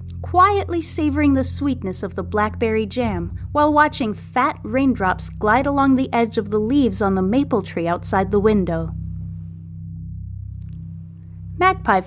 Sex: female